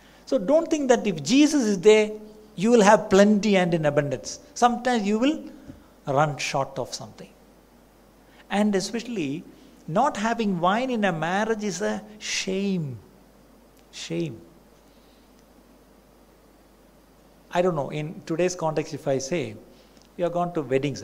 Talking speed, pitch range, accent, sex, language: 135 wpm, 160-225 Hz, native, male, Malayalam